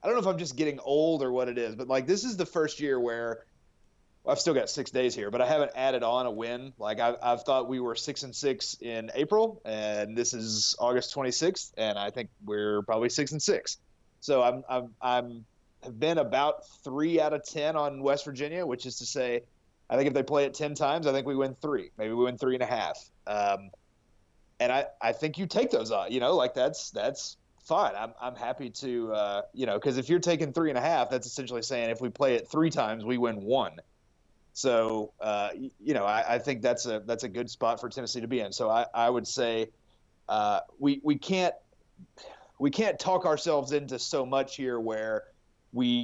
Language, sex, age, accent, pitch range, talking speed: English, male, 30-49, American, 115-145 Hz, 230 wpm